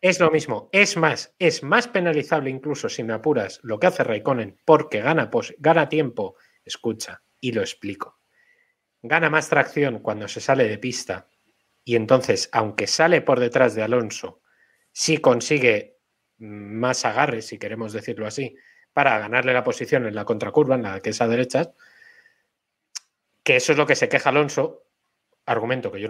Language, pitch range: Spanish, 125-200 Hz